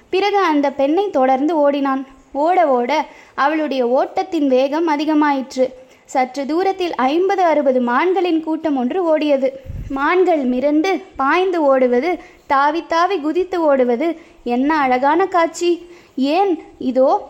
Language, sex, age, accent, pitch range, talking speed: Tamil, female, 20-39, native, 275-350 Hz, 110 wpm